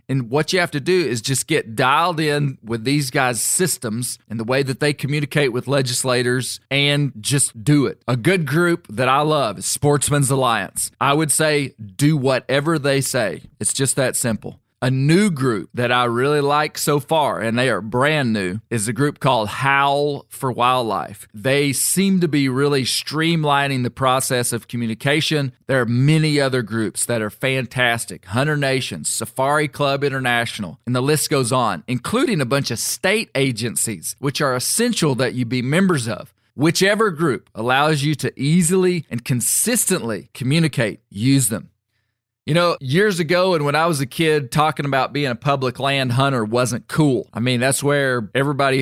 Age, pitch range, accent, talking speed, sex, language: 40-59, 120-145 Hz, American, 180 wpm, male, English